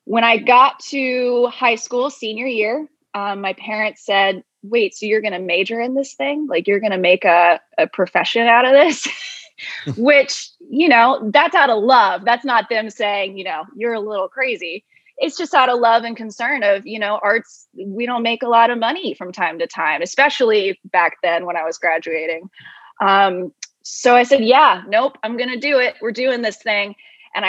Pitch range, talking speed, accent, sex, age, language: 195-250 Hz, 205 wpm, American, female, 20-39, English